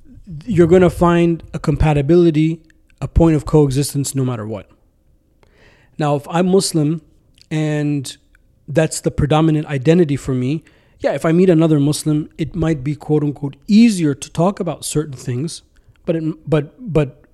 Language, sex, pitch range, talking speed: English, male, 135-165 Hz, 150 wpm